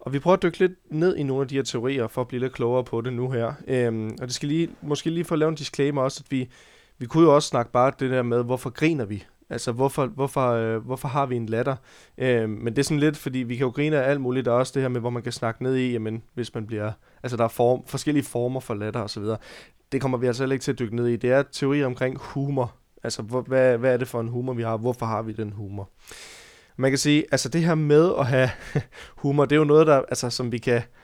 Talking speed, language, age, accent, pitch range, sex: 280 wpm, Danish, 20-39, native, 120-145 Hz, male